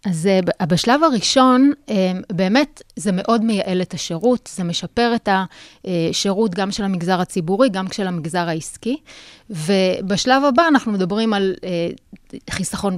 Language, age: Hebrew, 30-49